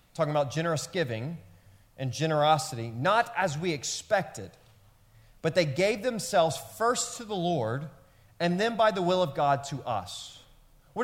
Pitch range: 130-180 Hz